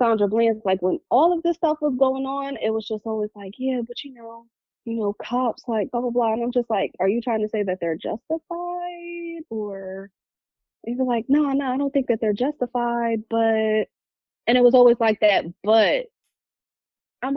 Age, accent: 20-39, American